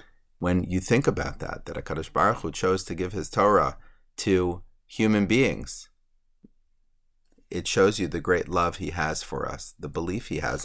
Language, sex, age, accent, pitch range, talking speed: English, male, 30-49, American, 80-95 Hz, 175 wpm